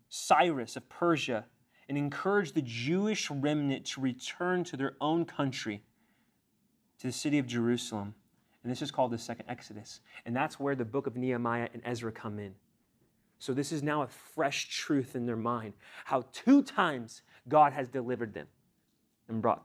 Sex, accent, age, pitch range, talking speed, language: male, American, 30-49, 115-140 Hz, 170 wpm, English